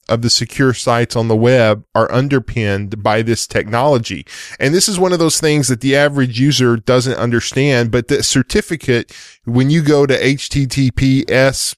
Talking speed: 170 wpm